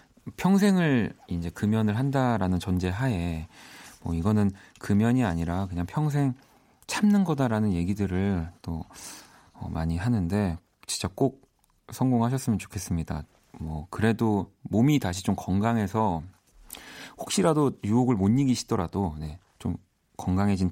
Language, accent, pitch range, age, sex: Korean, native, 90-135 Hz, 40-59, male